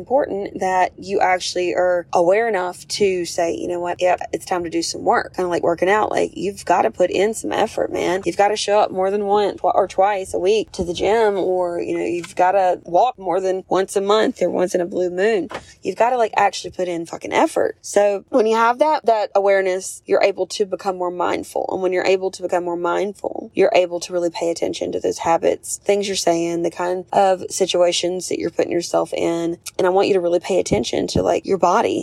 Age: 20-39